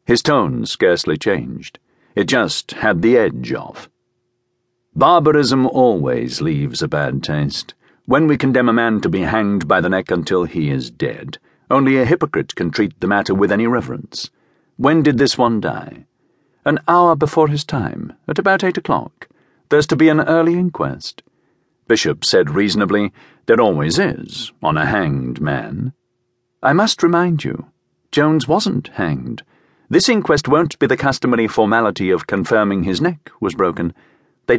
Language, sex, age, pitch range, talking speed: English, male, 50-69, 110-155 Hz, 160 wpm